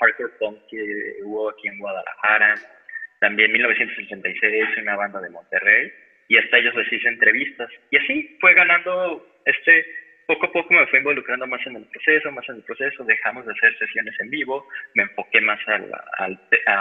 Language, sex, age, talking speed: Spanish, male, 20-39, 175 wpm